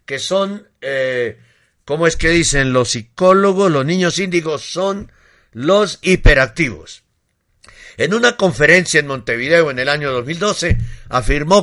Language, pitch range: Spanish, 130-185 Hz